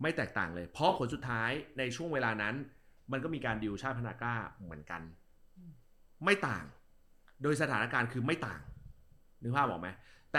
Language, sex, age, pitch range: Thai, male, 30-49, 95-135 Hz